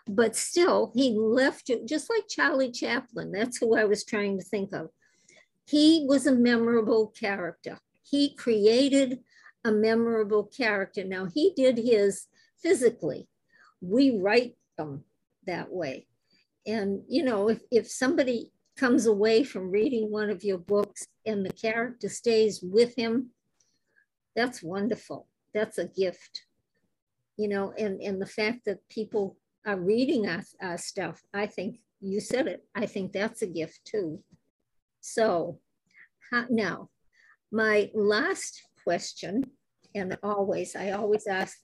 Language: English